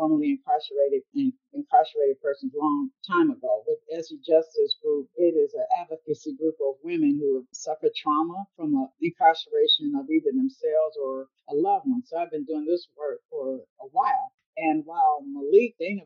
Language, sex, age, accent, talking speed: English, female, 50-69, American, 165 wpm